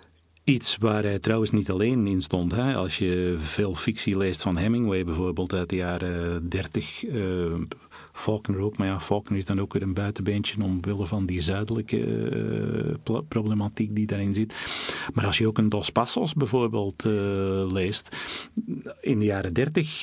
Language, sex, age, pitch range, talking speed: Dutch, male, 40-59, 95-115 Hz, 170 wpm